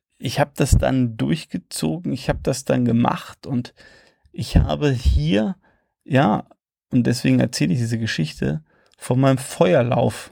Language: German